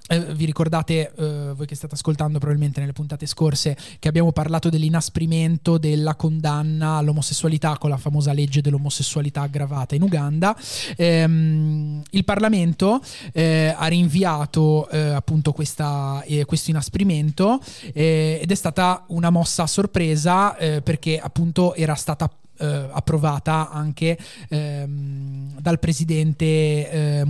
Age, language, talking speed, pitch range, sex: 20-39, Italian, 125 wpm, 150-170 Hz, male